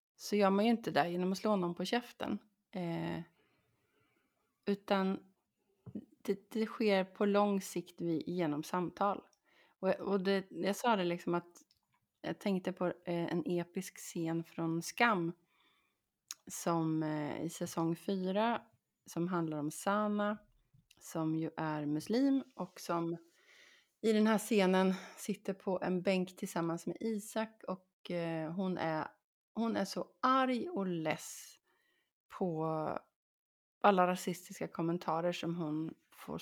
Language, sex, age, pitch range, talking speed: Swedish, female, 30-49, 170-215 Hz, 125 wpm